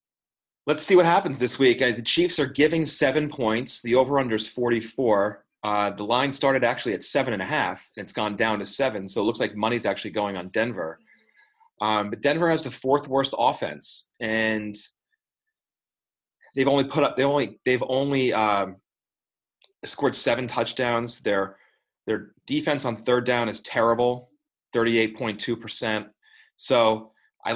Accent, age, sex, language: American, 30-49, male, English